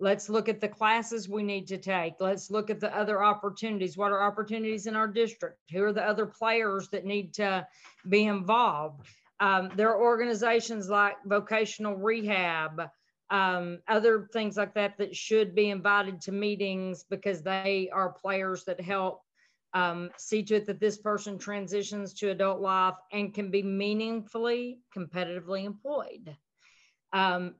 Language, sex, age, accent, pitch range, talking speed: English, female, 40-59, American, 190-220 Hz, 160 wpm